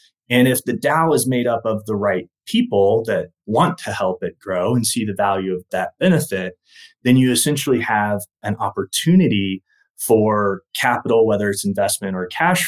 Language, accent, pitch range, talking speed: English, American, 100-135 Hz, 175 wpm